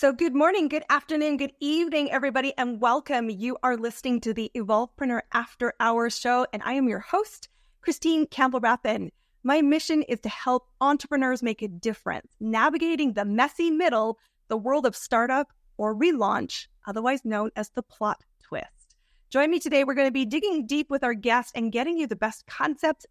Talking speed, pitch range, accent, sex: 185 wpm, 225-285 Hz, American, female